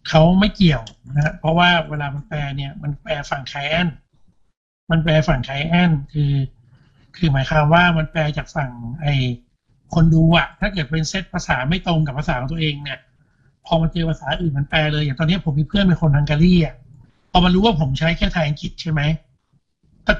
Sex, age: male, 60-79